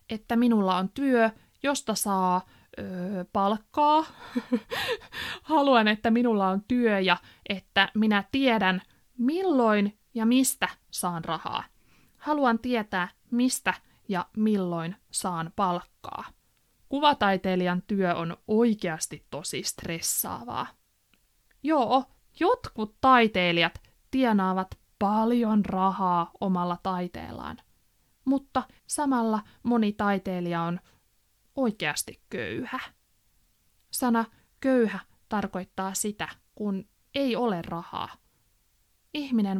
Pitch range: 190-245 Hz